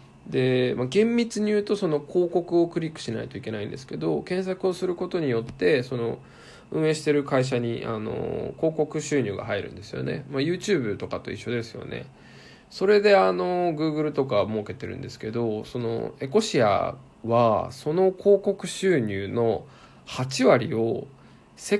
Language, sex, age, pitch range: Japanese, male, 20-39, 115-165 Hz